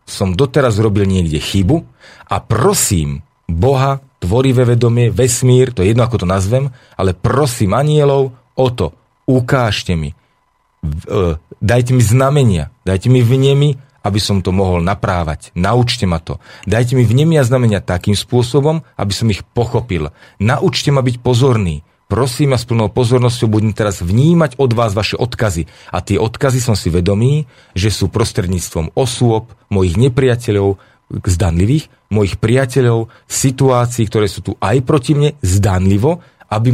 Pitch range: 100-130 Hz